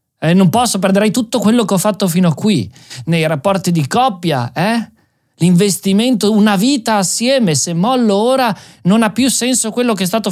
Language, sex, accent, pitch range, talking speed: Italian, male, native, 140-230 Hz, 185 wpm